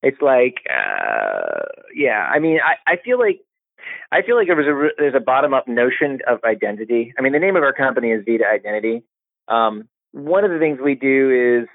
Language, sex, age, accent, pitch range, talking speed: English, male, 30-49, American, 120-175 Hz, 205 wpm